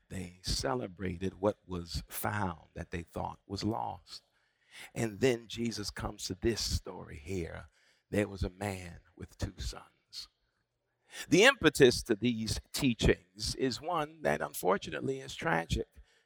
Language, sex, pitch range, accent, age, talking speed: English, male, 95-130 Hz, American, 50-69, 135 wpm